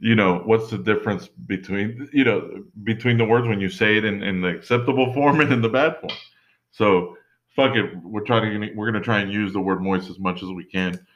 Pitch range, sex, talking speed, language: 90-115 Hz, male, 240 wpm, English